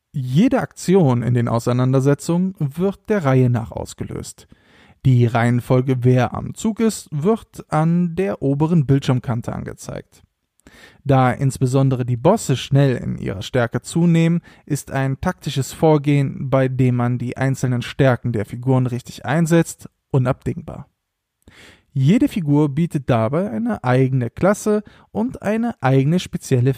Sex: male